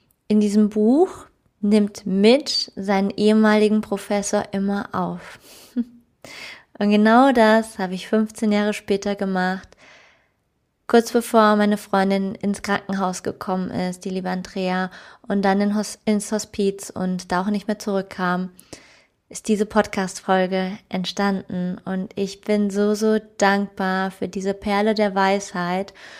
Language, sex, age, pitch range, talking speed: German, female, 20-39, 195-215 Hz, 125 wpm